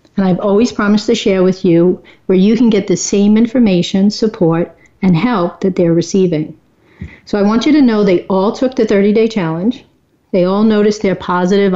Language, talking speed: English, 195 wpm